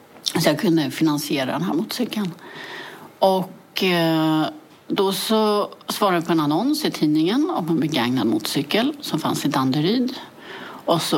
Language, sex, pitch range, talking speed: English, female, 150-215 Hz, 145 wpm